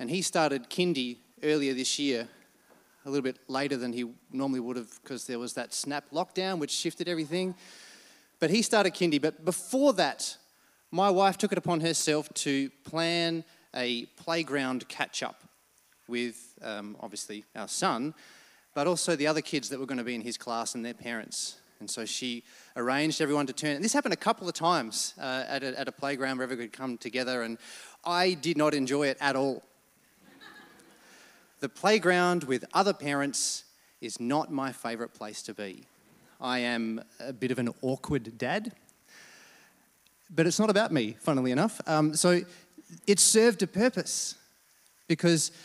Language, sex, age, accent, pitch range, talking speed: English, male, 30-49, Australian, 130-170 Hz, 170 wpm